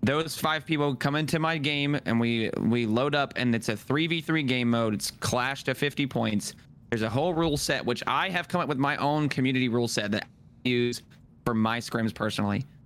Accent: American